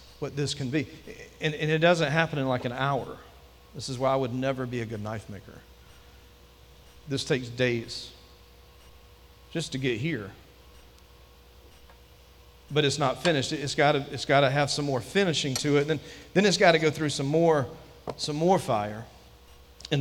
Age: 40-59